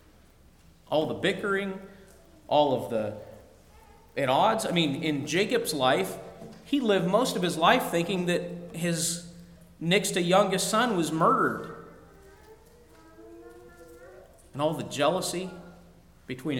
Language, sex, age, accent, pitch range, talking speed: English, male, 40-59, American, 135-205 Hz, 120 wpm